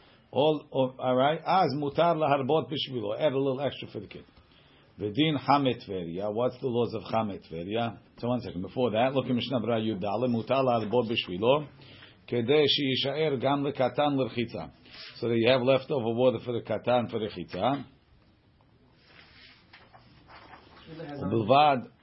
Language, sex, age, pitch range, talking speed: English, male, 50-69, 110-135 Hz, 155 wpm